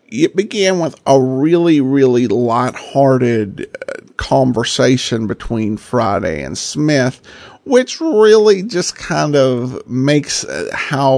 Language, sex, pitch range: English, male, 125-165 Hz